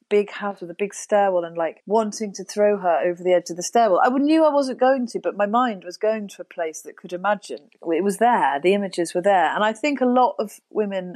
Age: 30-49